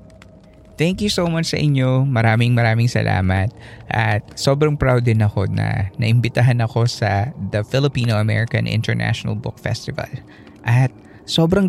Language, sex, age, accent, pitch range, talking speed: Filipino, male, 20-39, native, 105-135 Hz, 135 wpm